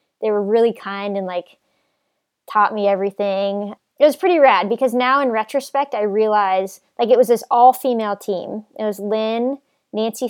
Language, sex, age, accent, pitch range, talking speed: English, female, 20-39, American, 195-255 Hz, 170 wpm